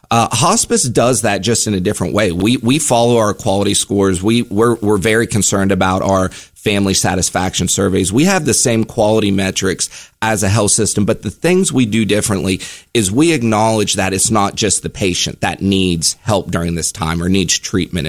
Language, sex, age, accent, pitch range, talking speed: English, male, 30-49, American, 90-110 Hz, 195 wpm